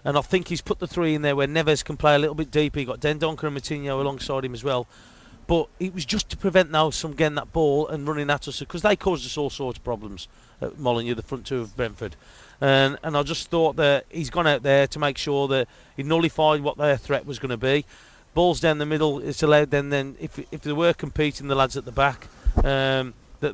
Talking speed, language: 250 wpm, English